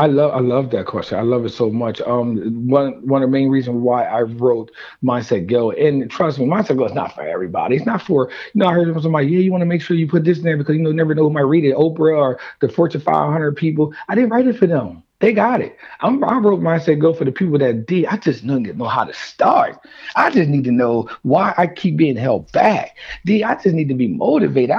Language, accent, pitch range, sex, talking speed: English, American, 125-160 Hz, male, 275 wpm